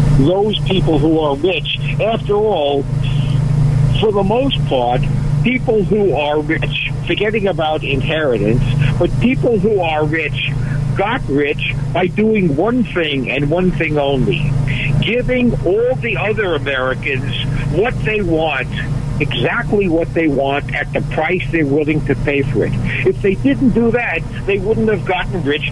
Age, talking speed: 60-79, 150 wpm